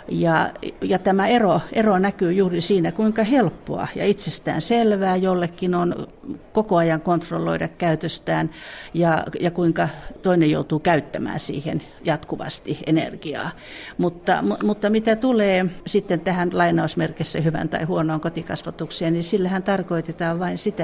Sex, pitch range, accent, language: female, 160-195 Hz, native, Finnish